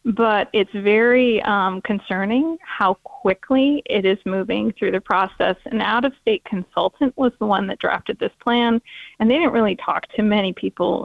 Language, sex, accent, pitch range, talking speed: English, female, American, 210-260 Hz, 170 wpm